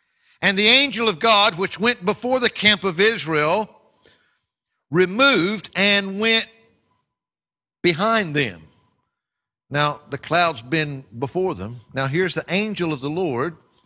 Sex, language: male, English